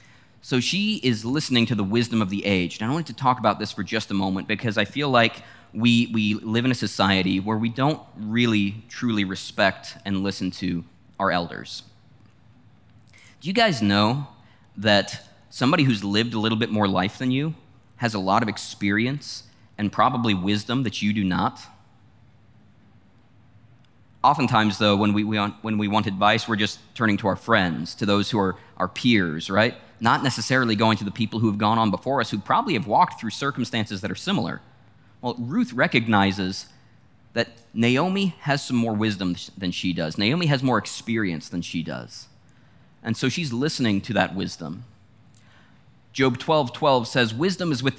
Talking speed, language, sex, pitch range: 180 wpm, English, male, 105-125 Hz